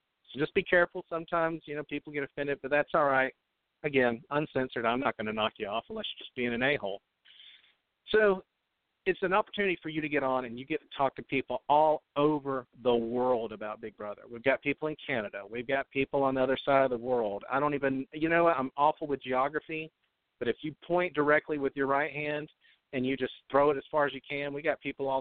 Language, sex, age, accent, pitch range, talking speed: English, male, 50-69, American, 125-155 Hz, 235 wpm